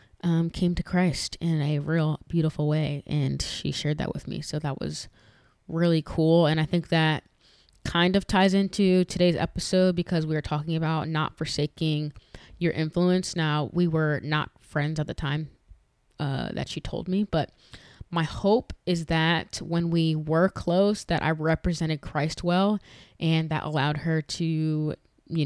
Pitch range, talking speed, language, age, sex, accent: 150-175 Hz, 170 wpm, English, 20-39, female, American